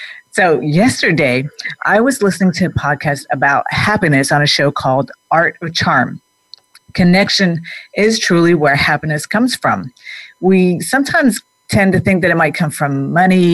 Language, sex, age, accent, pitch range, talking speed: English, female, 50-69, American, 150-185 Hz, 155 wpm